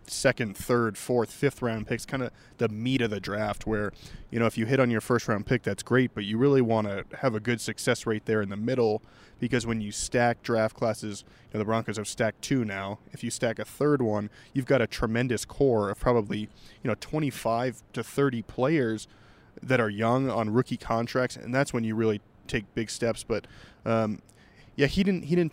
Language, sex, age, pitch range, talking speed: English, male, 20-39, 110-125 Hz, 220 wpm